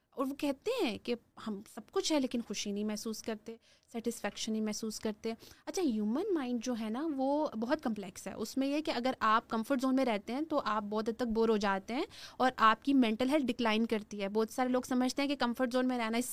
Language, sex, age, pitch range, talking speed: Urdu, female, 20-39, 220-275 Hz, 245 wpm